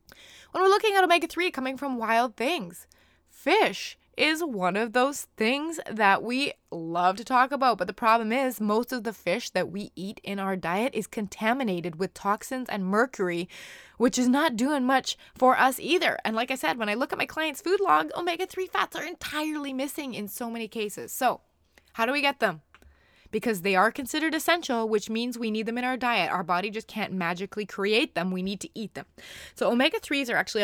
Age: 20-39